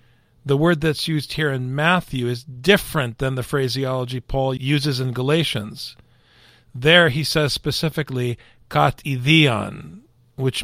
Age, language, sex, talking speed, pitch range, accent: 40-59, English, male, 125 wpm, 125-175 Hz, American